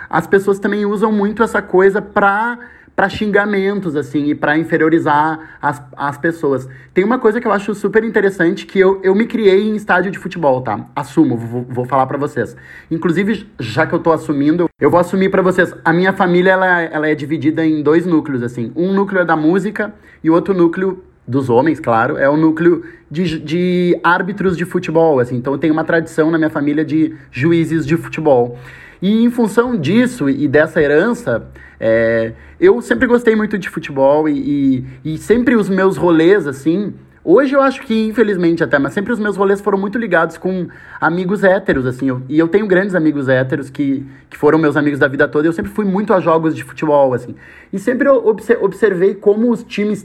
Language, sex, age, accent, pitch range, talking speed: Portuguese, male, 20-39, Brazilian, 150-200 Hz, 195 wpm